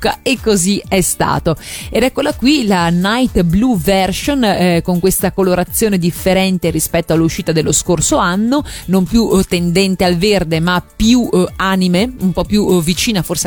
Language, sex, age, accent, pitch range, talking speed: Italian, female, 30-49, native, 175-215 Hz, 155 wpm